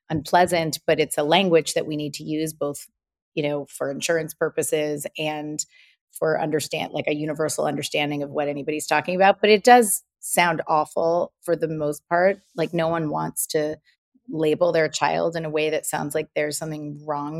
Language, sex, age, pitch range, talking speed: English, female, 30-49, 155-180 Hz, 185 wpm